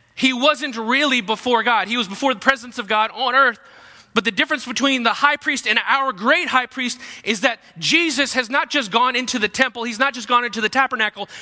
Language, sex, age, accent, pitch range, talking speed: English, male, 30-49, American, 190-260 Hz, 225 wpm